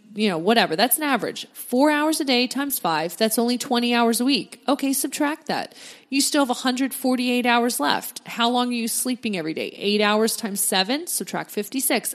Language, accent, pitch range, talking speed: English, American, 210-260 Hz, 200 wpm